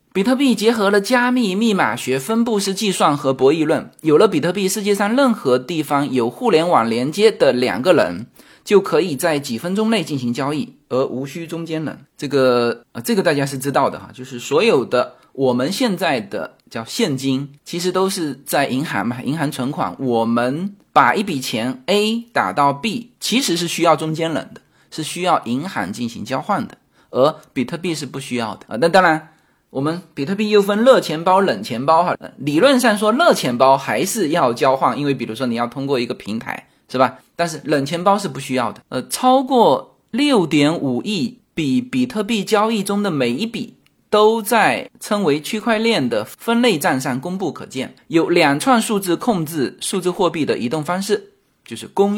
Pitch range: 135-215 Hz